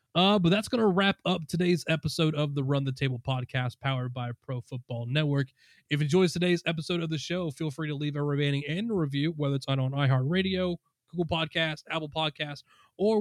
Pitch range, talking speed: 140-175 Hz, 205 wpm